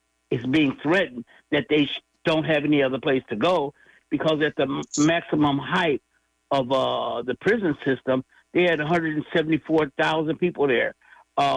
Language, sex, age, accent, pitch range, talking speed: English, male, 60-79, American, 130-160 Hz, 140 wpm